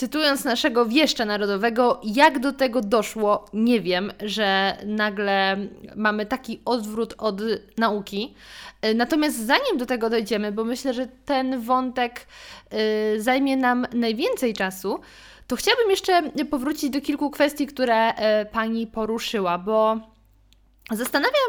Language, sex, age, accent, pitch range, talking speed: Polish, female, 20-39, native, 220-275 Hz, 120 wpm